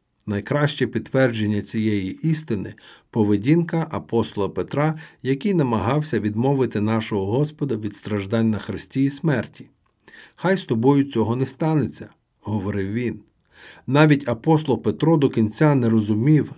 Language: Ukrainian